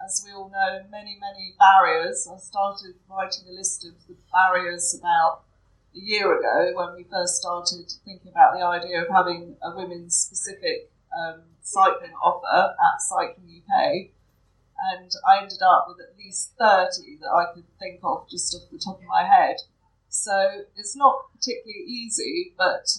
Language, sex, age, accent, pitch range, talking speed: English, female, 40-59, British, 185-220 Hz, 165 wpm